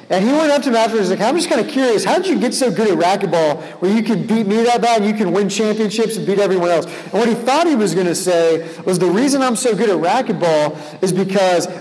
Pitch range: 180-240 Hz